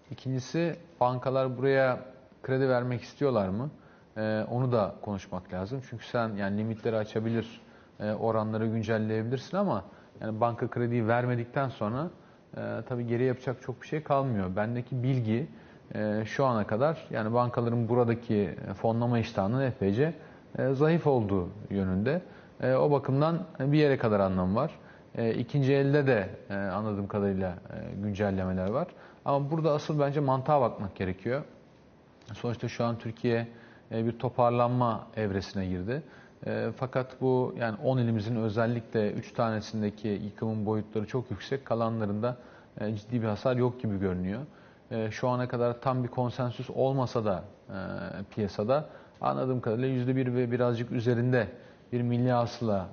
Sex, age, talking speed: male, 40-59, 135 wpm